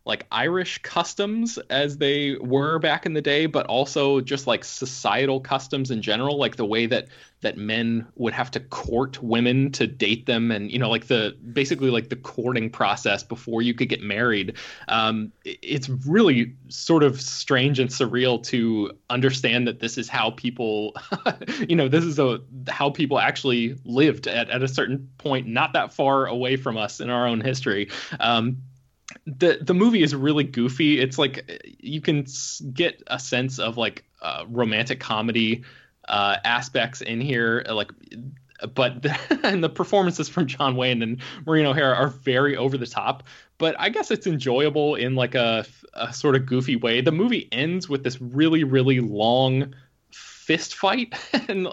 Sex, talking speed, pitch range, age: male, 175 wpm, 120-150 Hz, 20-39